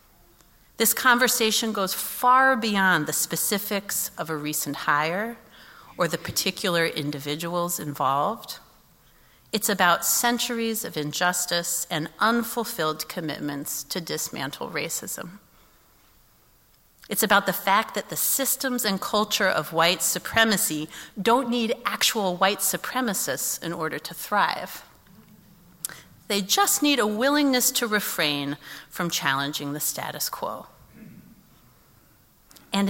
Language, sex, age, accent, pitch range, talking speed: English, female, 40-59, American, 165-225 Hz, 110 wpm